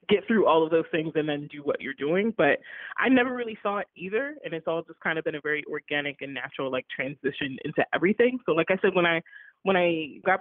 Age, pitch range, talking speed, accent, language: 20-39, 150-180 Hz, 255 wpm, American, English